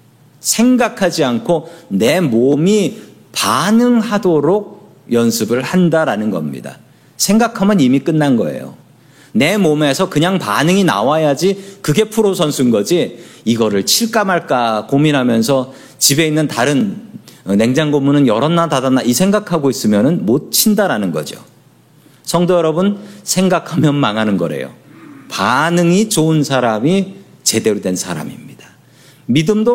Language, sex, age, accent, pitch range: Korean, male, 40-59, native, 135-195 Hz